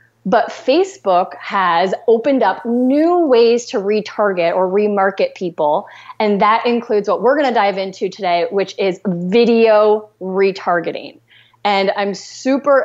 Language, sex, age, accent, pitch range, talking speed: English, female, 30-49, American, 195-240 Hz, 135 wpm